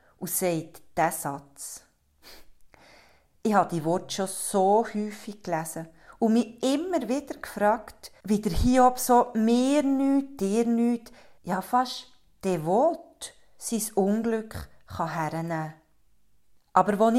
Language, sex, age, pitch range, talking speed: German, female, 40-59, 175-230 Hz, 125 wpm